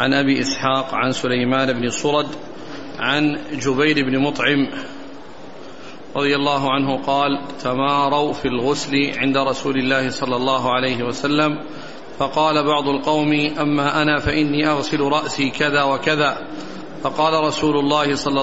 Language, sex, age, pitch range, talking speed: Arabic, male, 40-59, 135-150 Hz, 125 wpm